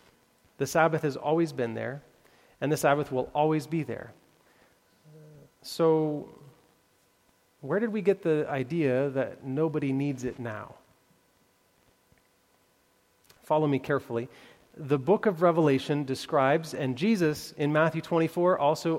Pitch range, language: 135-180 Hz, English